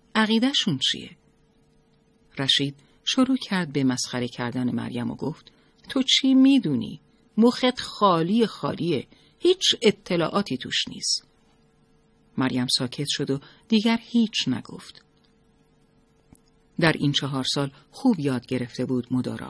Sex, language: female, Persian